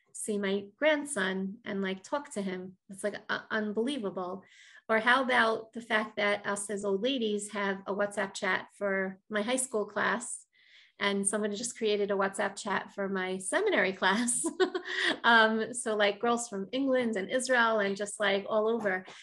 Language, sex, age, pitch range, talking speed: English, female, 30-49, 195-230 Hz, 170 wpm